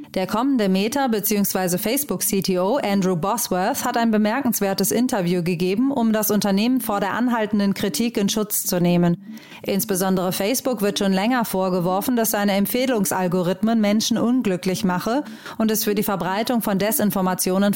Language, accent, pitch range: German, German, 190-230 Hz